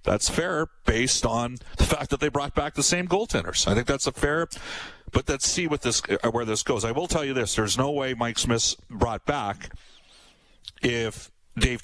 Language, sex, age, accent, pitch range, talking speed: English, male, 50-69, American, 115-145 Hz, 195 wpm